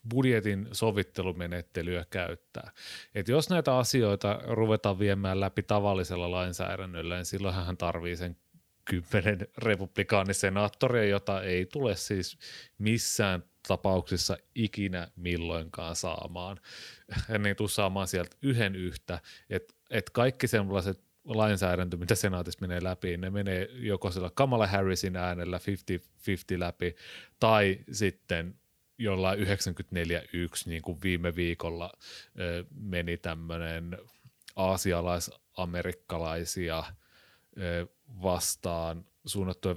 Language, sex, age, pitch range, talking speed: Finnish, male, 30-49, 90-105 Hz, 100 wpm